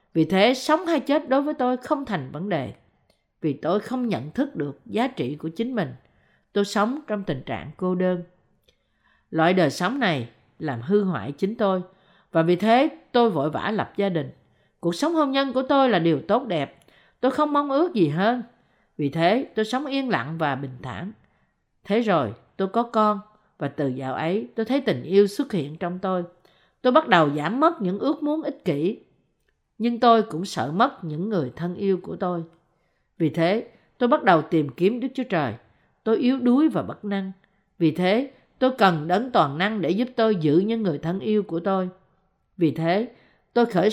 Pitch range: 165-235 Hz